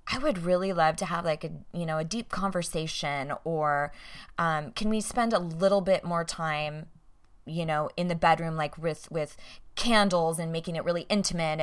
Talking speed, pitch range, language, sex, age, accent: 190 wpm, 155-195 Hz, English, female, 20-39, American